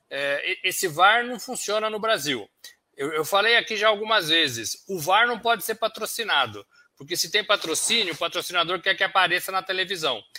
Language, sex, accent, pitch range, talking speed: Portuguese, male, Brazilian, 170-225 Hz, 165 wpm